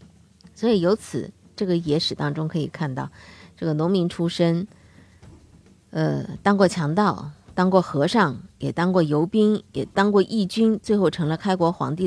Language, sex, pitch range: Chinese, female, 150-215 Hz